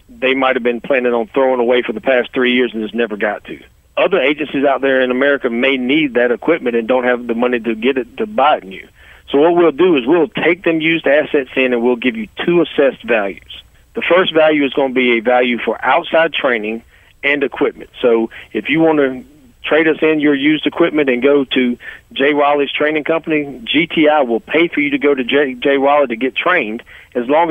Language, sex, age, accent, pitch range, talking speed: English, male, 40-59, American, 125-150 Hz, 235 wpm